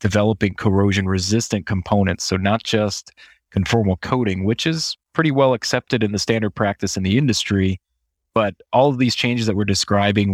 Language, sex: English, male